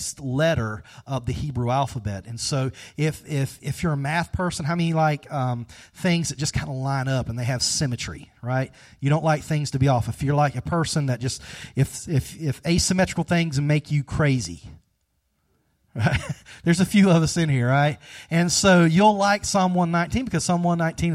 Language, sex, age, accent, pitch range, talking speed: English, male, 30-49, American, 125-160 Hz, 200 wpm